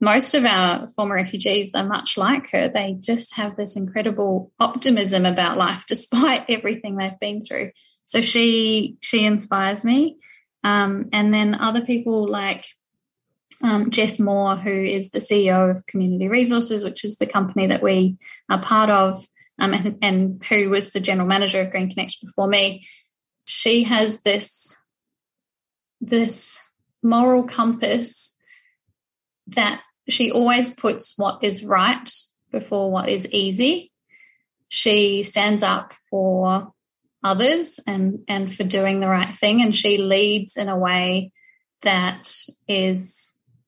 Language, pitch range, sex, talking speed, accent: English, 195-235 Hz, female, 140 wpm, Australian